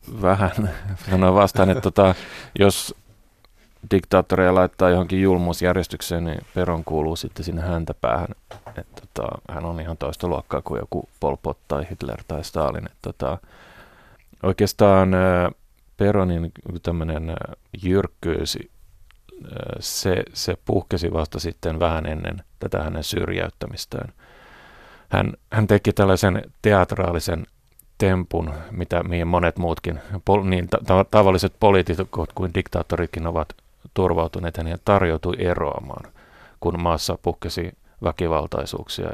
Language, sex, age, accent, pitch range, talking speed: Finnish, male, 30-49, native, 85-95 Hz, 115 wpm